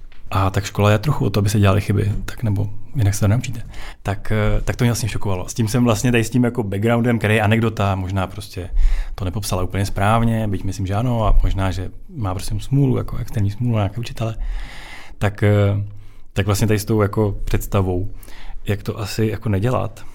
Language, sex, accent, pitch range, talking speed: Czech, male, native, 95-110 Hz, 210 wpm